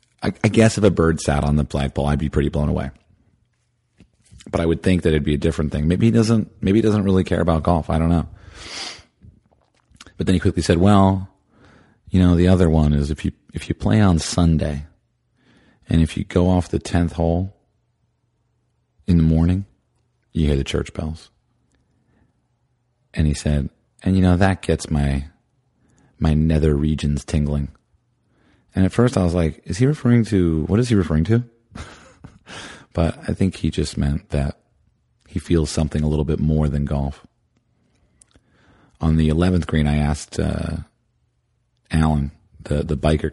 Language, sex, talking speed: English, male, 175 wpm